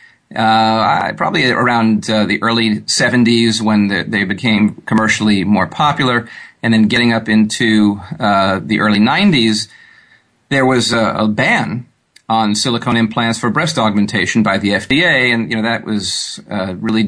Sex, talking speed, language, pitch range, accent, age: male, 160 wpm, English, 105-130 Hz, American, 40-59